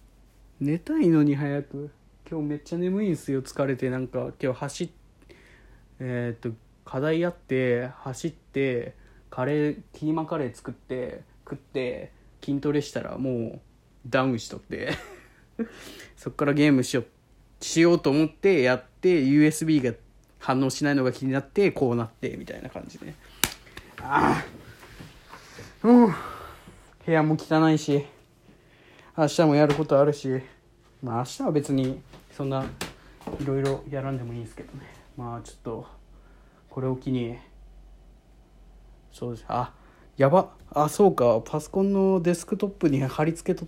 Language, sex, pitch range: Japanese, male, 125-155 Hz